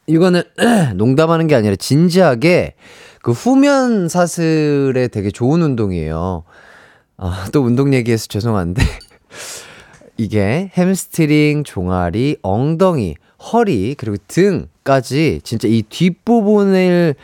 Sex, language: male, Korean